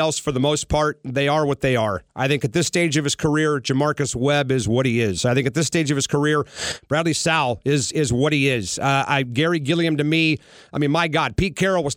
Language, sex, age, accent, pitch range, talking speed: English, male, 40-59, American, 145-185 Hz, 260 wpm